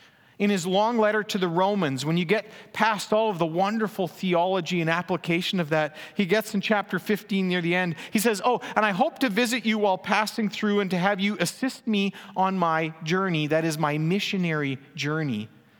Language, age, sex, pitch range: English, 40-59, male, 170-215 Hz